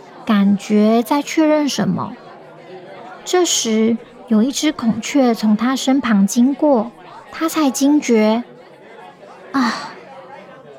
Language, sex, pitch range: Chinese, male, 220-290 Hz